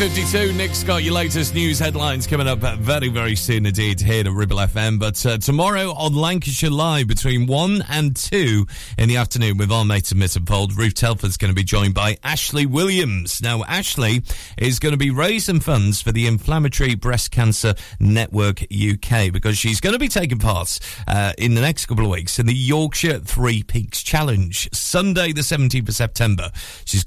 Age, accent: 40-59, British